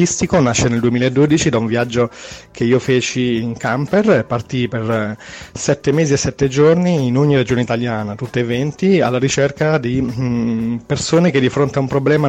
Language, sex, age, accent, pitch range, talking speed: Italian, male, 30-49, native, 120-135 Hz, 175 wpm